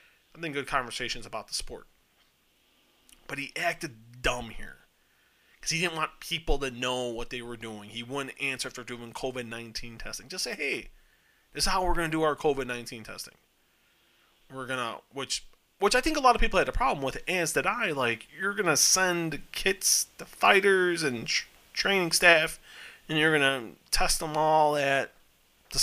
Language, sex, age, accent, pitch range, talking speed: English, male, 30-49, American, 125-165 Hz, 190 wpm